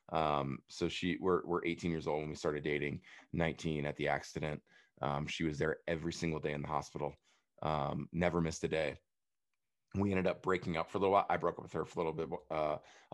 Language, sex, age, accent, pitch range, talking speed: English, male, 30-49, American, 75-90 Hz, 230 wpm